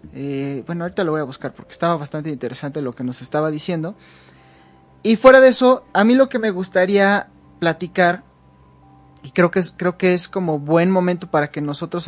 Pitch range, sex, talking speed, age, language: 155-195 Hz, male, 190 wpm, 30-49, Spanish